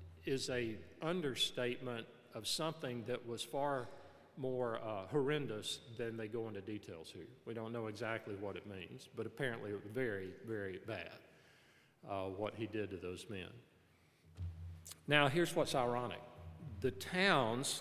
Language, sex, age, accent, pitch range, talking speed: English, male, 50-69, American, 105-145 Hz, 150 wpm